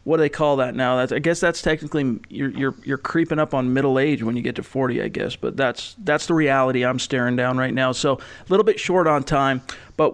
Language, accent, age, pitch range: English, American, 40-59, 130-150 Hz